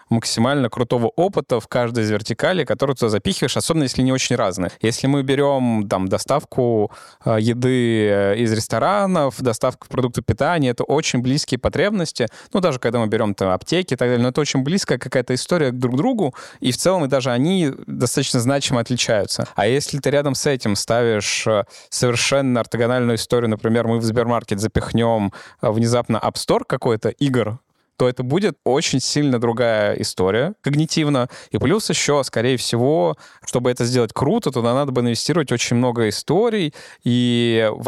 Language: Russian